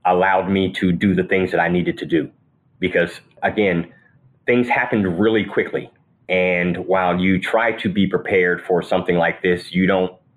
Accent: American